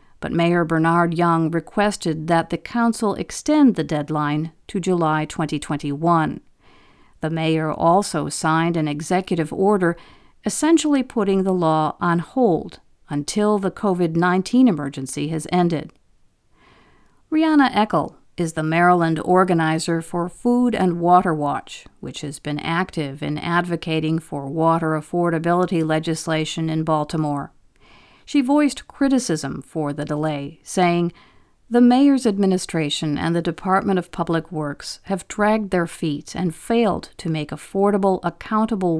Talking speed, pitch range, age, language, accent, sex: 130 wpm, 160-205 Hz, 50-69, English, American, female